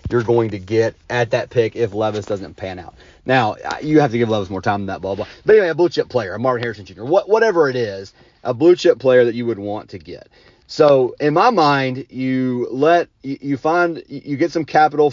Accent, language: American, English